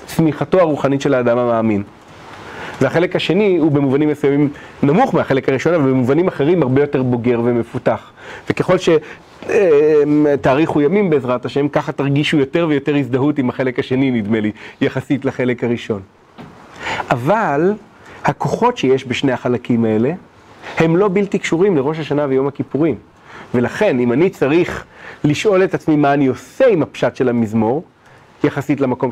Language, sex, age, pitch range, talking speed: Hebrew, male, 30-49, 130-160 Hz, 140 wpm